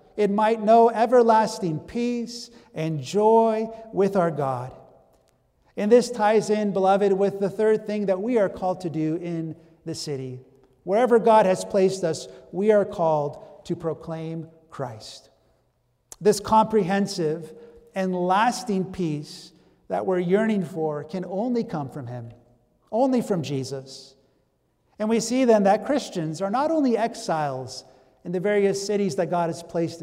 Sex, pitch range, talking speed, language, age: male, 165-220 Hz, 150 wpm, English, 50-69